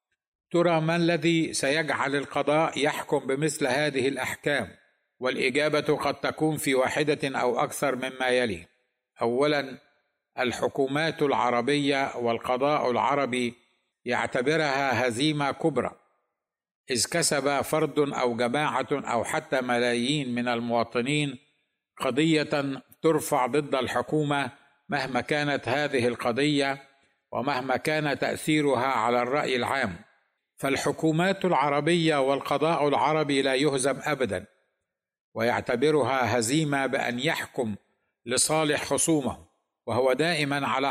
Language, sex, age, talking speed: Arabic, male, 50-69, 95 wpm